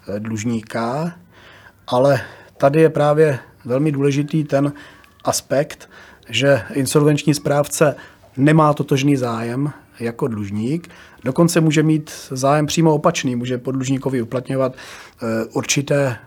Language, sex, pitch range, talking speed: Czech, male, 115-150 Hz, 100 wpm